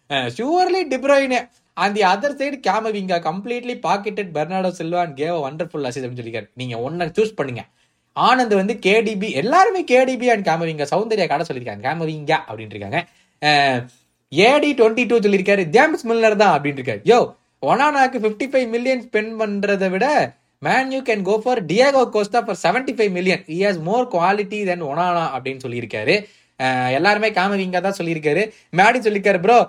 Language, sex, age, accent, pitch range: Tamil, male, 20-39, native, 165-230 Hz